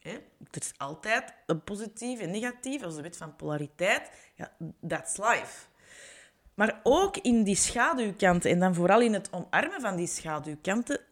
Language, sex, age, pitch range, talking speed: Dutch, female, 30-49, 160-215 Hz, 155 wpm